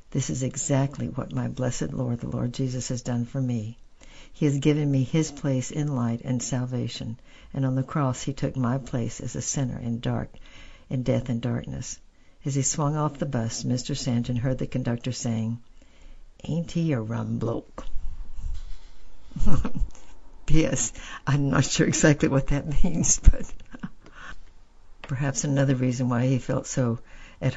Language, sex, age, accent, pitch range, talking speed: English, female, 60-79, American, 120-135 Hz, 165 wpm